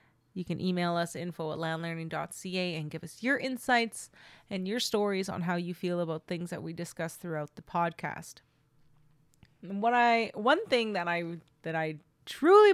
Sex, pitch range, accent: female, 170-235 Hz, American